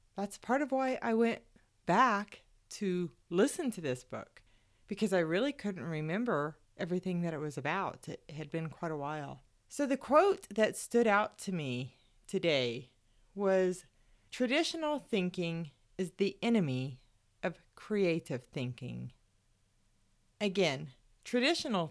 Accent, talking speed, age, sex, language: American, 130 wpm, 30-49, female, English